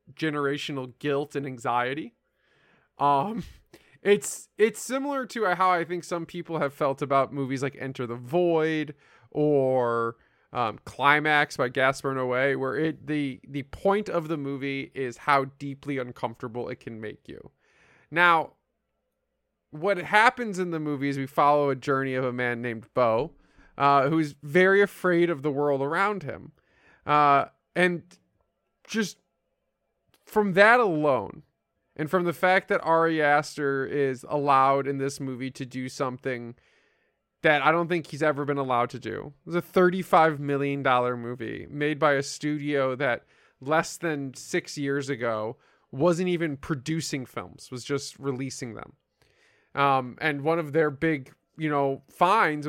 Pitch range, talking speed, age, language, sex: 135-165 Hz, 150 wpm, 20-39, English, male